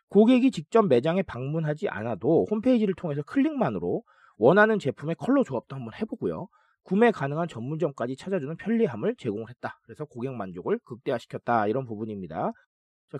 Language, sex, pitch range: Korean, male, 135-225 Hz